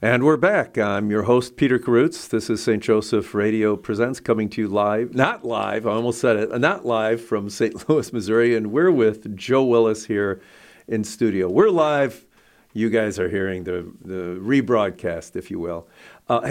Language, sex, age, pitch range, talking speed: English, male, 50-69, 105-135 Hz, 185 wpm